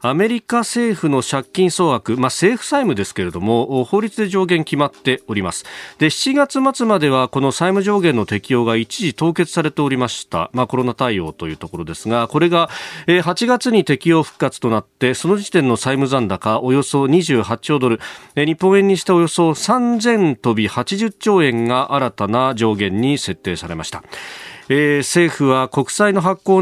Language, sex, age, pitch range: Japanese, male, 40-59, 120-180 Hz